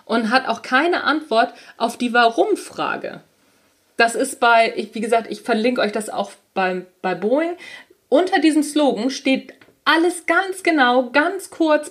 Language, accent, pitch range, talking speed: German, German, 230-300 Hz, 150 wpm